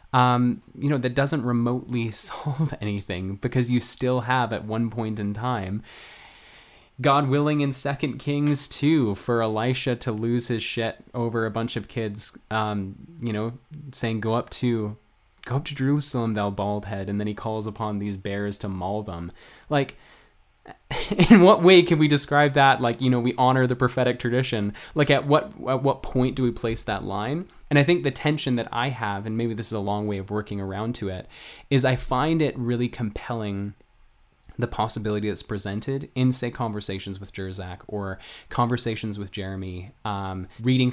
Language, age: English, 20-39